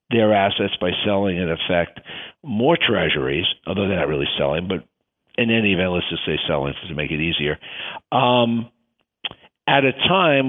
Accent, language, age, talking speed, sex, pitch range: American, English, 50-69, 165 wpm, male, 105-125 Hz